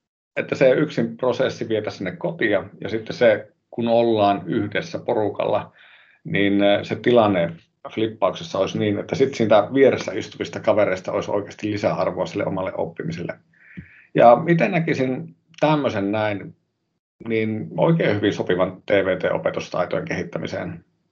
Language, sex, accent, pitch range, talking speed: Finnish, male, native, 100-135 Hz, 120 wpm